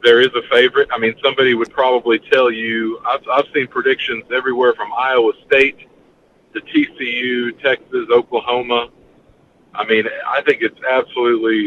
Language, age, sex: English, 40-59, male